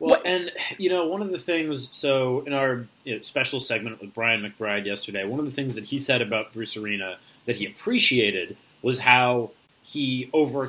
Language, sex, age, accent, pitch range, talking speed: English, male, 30-49, American, 125-155 Hz, 190 wpm